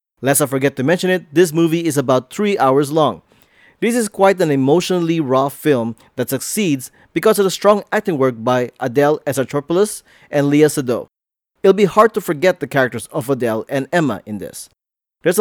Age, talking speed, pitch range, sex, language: 20-39, 185 wpm, 135-180 Hz, male, English